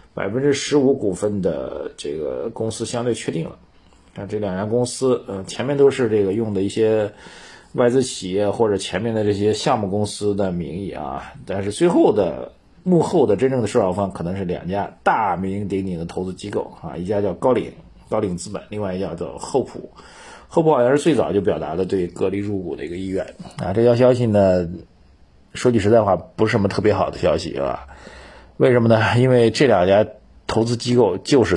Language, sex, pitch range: Chinese, male, 95-115 Hz